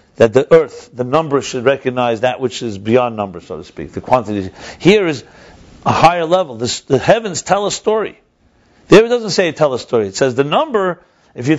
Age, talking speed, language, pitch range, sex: 50-69, 210 wpm, English, 115-160 Hz, male